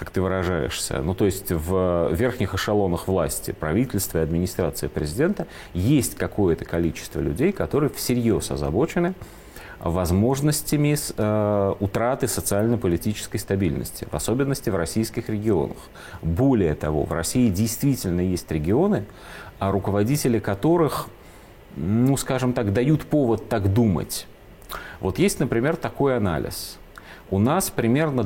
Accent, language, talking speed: native, Russian, 115 wpm